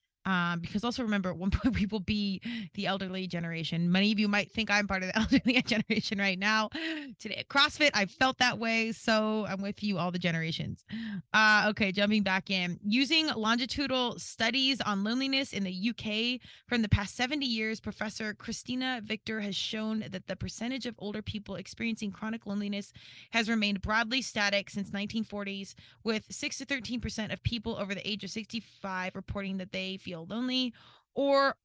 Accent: American